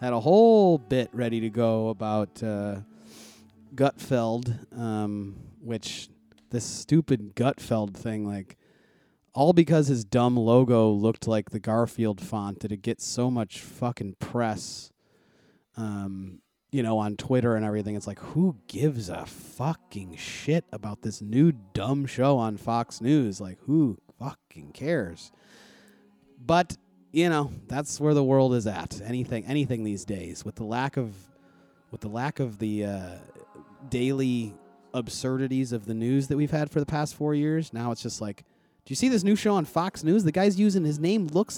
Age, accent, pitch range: 30-49, American, 110-150 Hz